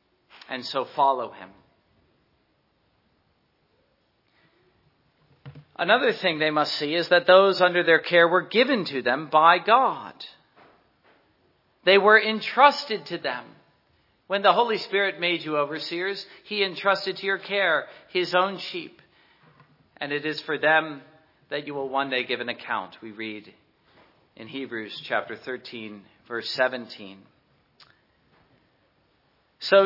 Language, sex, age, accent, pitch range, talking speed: English, male, 40-59, American, 135-185 Hz, 125 wpm